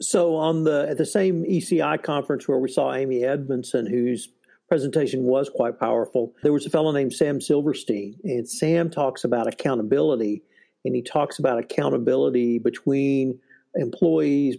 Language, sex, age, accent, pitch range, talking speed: English, male, 50-69, American, 120-145 Hz, 150 wpm